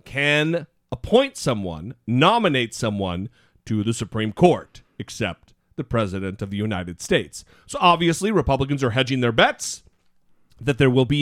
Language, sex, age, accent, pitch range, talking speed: English, male, 40-59, American, 120-175 Hz, 145 wpm